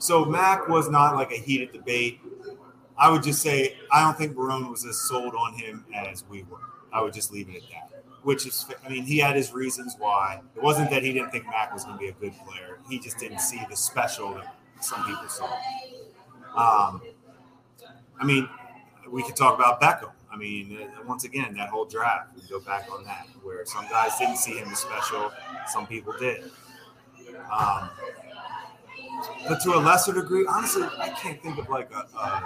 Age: 30-49